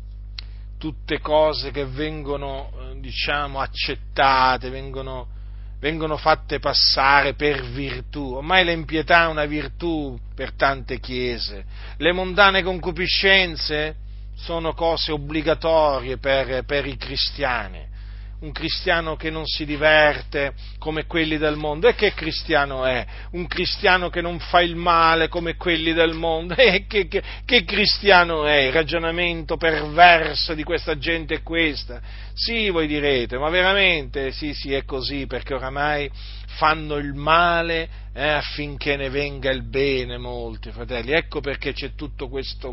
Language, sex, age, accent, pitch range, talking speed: Italian, male, 40-59, native, 125-160 Hz, 135 wpm